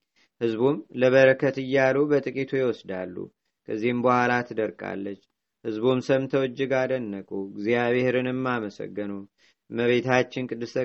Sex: male